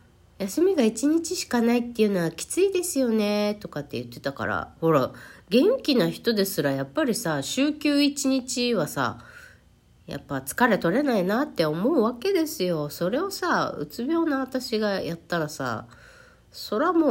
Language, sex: Japanese, female